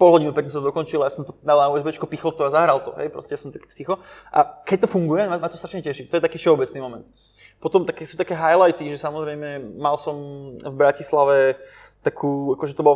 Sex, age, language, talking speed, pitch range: male, 20-39, Czech, 220 wpm, 140-165 Hz